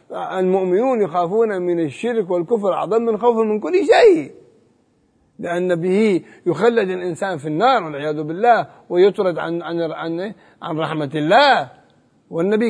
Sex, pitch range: male, 165-225 Hz